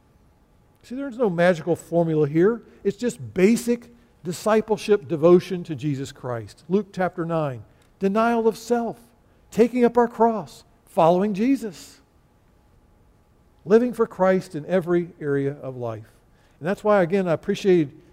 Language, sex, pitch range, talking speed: English, male, 155-220 Hz, 130 wpm